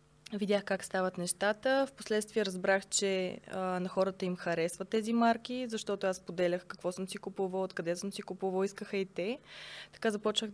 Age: 20-39